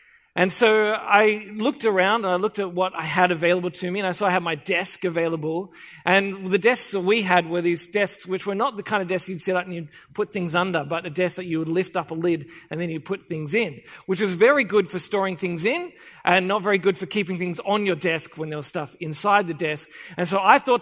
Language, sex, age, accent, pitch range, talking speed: English, male, 40-59, Australian, 175-220 Hz, 265 wpm